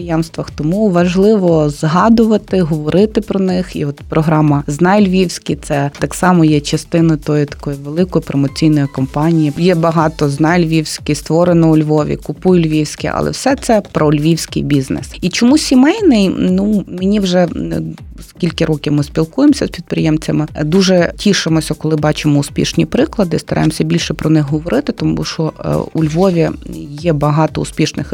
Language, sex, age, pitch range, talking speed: Ukrainian, female, 20-39, 150-185 Hz, 145 wpm